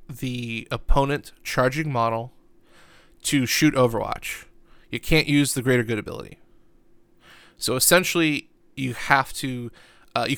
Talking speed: 120 wpm